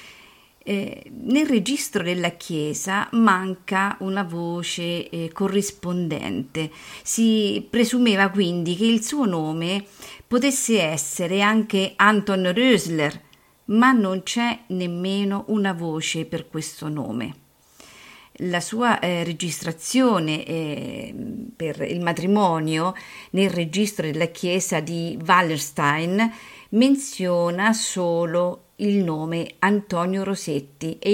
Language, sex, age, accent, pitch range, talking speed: Italian, female, 50-69, native, 170-225 Hz, 100 wpm